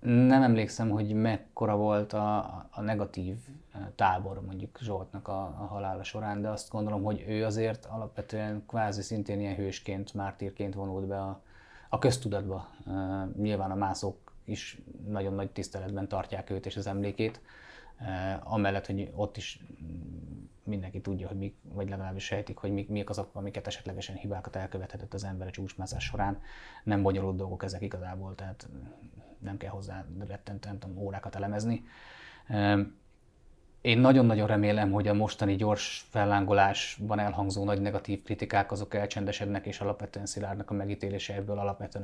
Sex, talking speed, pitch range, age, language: male, 145 wpm, 95-105 Hz, 30-49, Hungarian